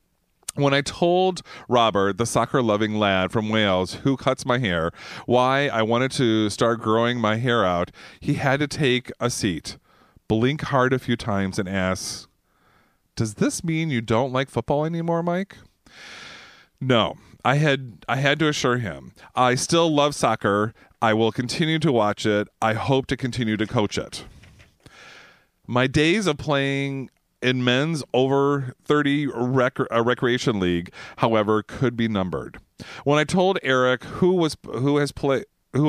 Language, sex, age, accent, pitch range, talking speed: English, male, 40-59, American, 110-140 Hz, 155 wpm